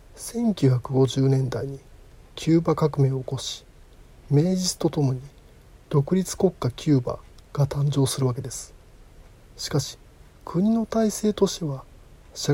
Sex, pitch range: male, 125-165 Hz